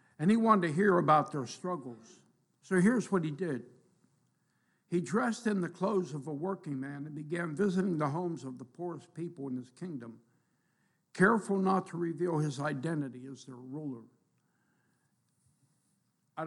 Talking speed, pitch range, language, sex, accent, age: 160 wpm, 140-185 Hz, English, male, American, 60-79